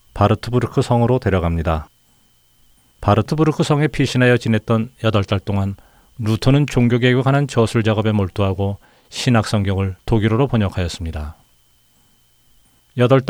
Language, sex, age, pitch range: Korean, male, 40-59, 95-125 Hz